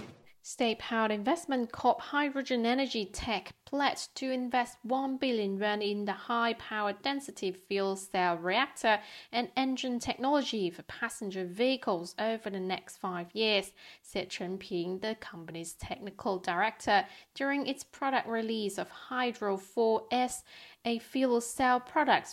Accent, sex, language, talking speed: British, female, English, 130 wpm